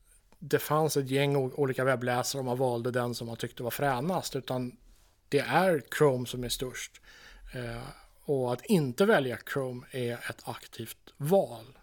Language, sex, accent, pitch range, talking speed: Swedish, male, Norwegian, 120-145 Hz, 155 wpm